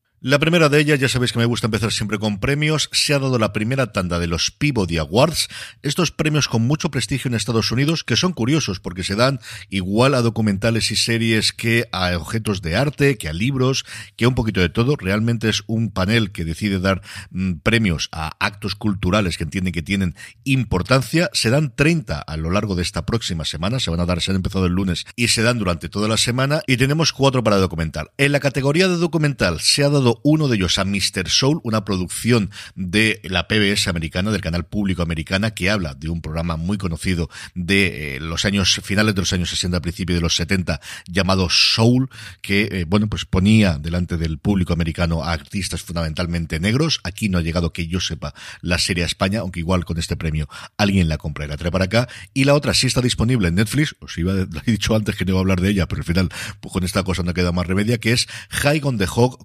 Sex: male